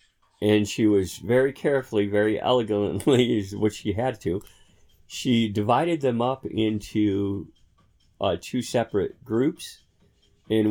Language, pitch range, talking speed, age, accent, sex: English, 95-120 Hz, 125 wpm, 40-59, American, male